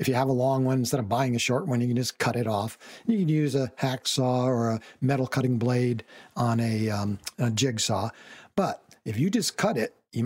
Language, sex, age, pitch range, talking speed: English, male, 60-79, 120-155 Hz, 235 wpm